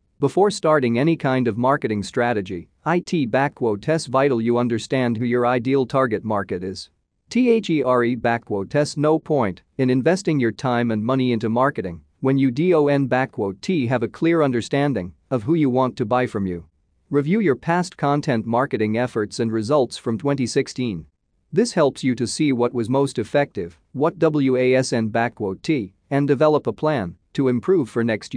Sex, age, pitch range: male, 40-59, 115-145 Hz